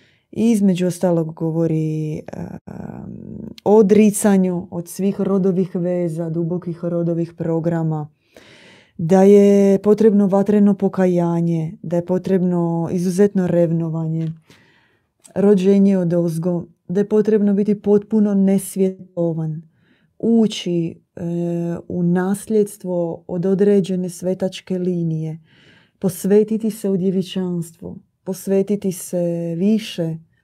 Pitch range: 170-195 Hz